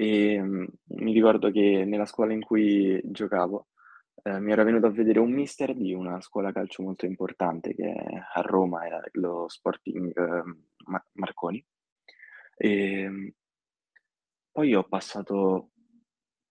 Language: Italian